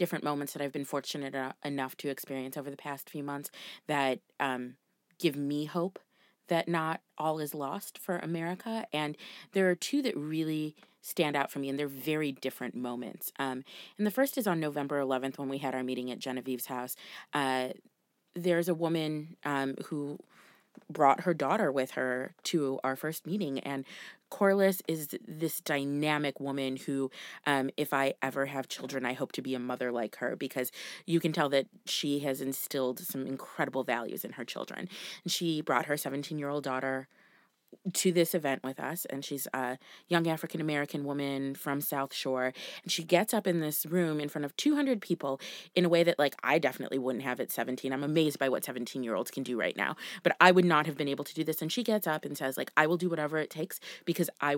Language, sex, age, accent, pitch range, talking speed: English, female, 30-49, American, 135-170 Hz, 200 wpm